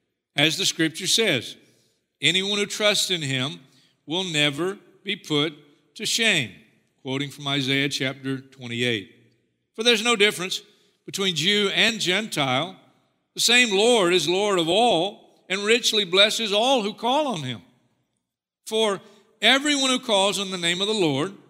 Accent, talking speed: American, 150 wpm